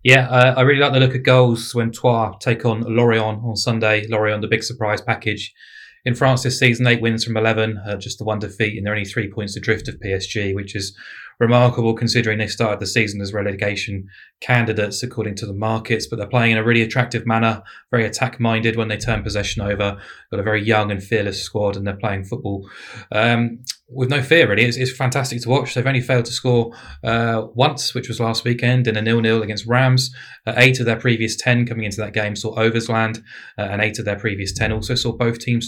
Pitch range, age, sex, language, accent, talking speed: 105-120 Hz, 20-39, male, English, British, 225 wpm